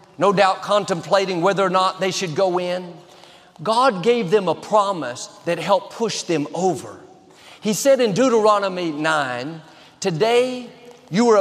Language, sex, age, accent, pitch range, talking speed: English, male, 50-69, American, 160-215 Hz, 145 wpm